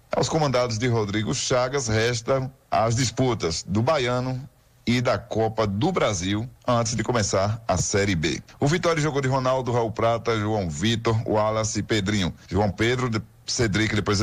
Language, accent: Portuguese, Brazilian